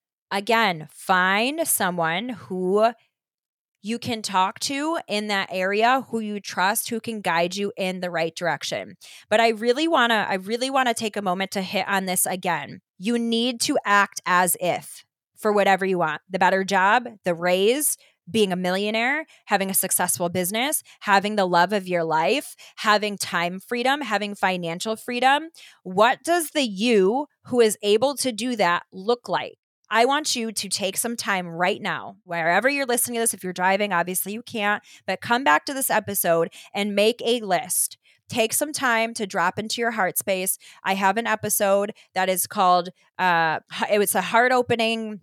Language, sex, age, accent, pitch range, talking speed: English, female, 20-39, American, 185-230 Hz, 175 wpm